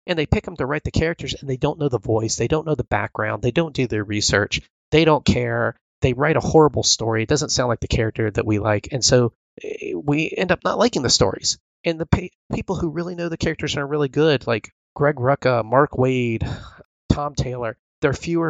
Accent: American